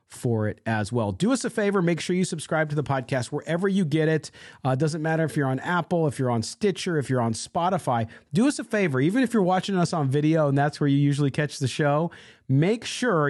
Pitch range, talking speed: 120-150 Hz, 255 wpm